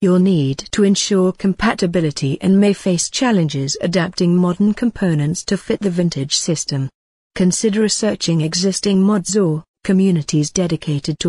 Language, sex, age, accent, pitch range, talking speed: English, female, 50-69, British, 160-195 Hz, 135 wpm